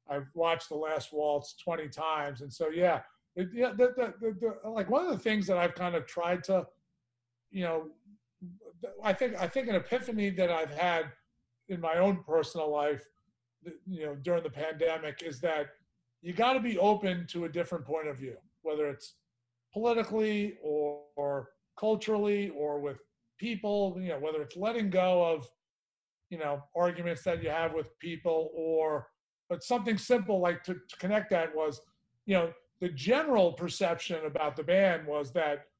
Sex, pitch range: male, 150-195 Hz